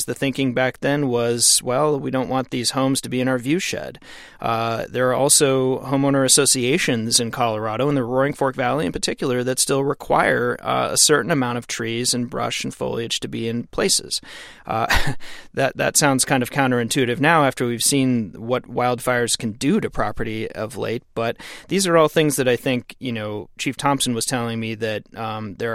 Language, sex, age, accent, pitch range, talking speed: English, male, 30-49, American, 115-135 Hz, 200 wpm